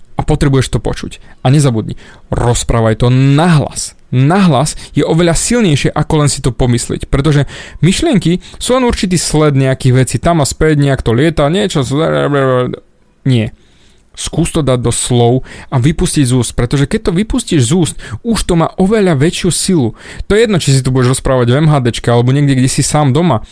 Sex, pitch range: male, 125-160 Hz